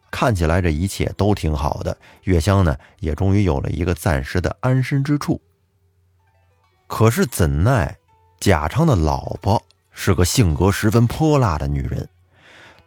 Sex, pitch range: male, 85-125 Hz